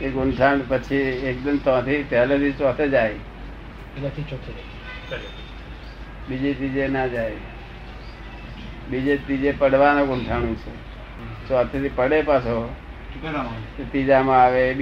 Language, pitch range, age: Gujarati, 115-140 Hz, 60-79